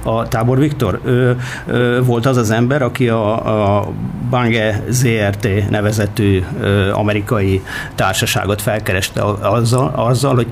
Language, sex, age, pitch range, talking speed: Hungarian, male, 50-69, 100-130 Hz, 120 wpm